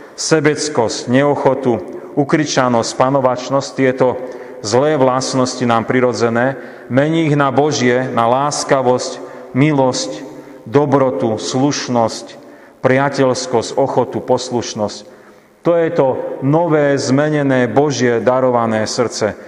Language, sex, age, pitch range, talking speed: Slovak, male, 40-59, 120-155 Hz, 90 wpm